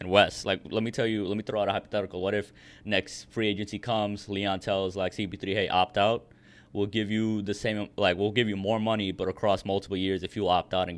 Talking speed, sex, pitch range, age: 245 wpm, male, 95-110 Hz, 20-39